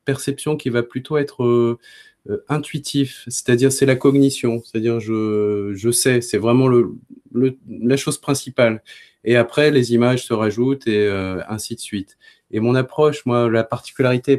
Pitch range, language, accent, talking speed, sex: 110-135 Hz, French, French, 165 wpm, male